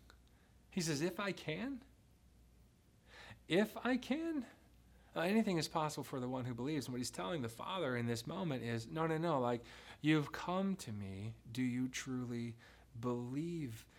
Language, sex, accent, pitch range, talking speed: English, male, American, 115-145 Hz, 165 wpm